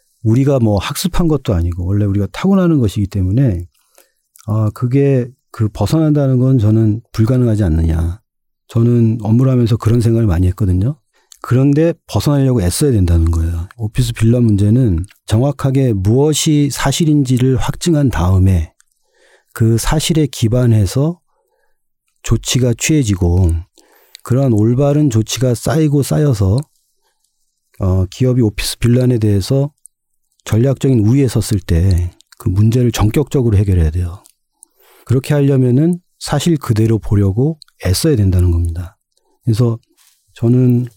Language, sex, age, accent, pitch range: Korean, male, 40-59, native, 100-135 Hz